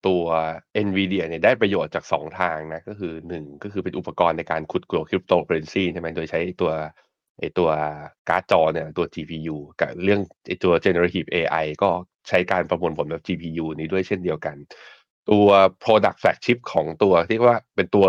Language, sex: Thai, male